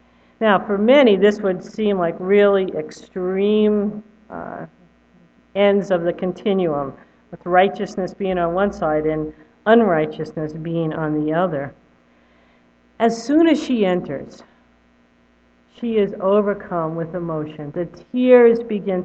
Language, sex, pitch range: English, female, 155-220 Hz